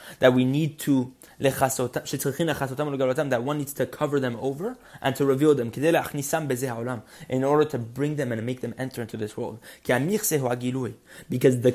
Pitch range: 120-150 Hz